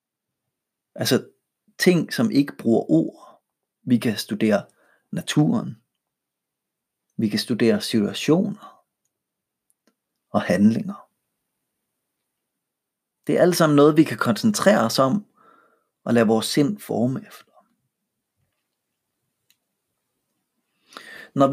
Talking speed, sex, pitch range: 90 wpm, male, 135-205 Hz